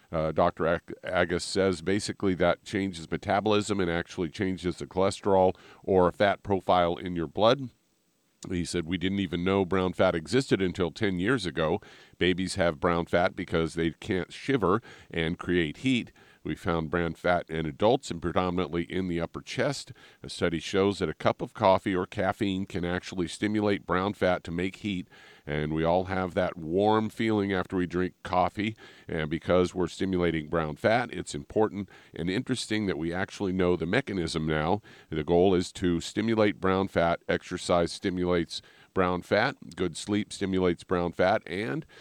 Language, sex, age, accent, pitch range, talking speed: English, male, 50-69, American, 85-100 Hz, 170 wpm